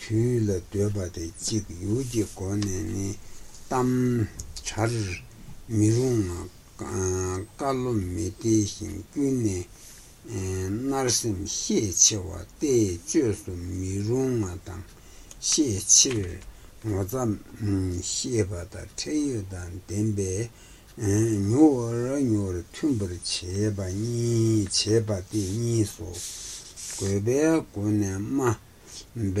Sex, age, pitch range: male, 60-79, 95-115 Hz